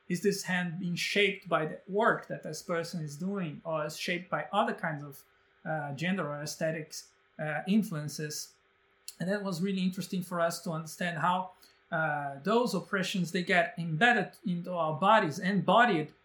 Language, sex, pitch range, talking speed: English, male, 165-210 Hz, 170 wpm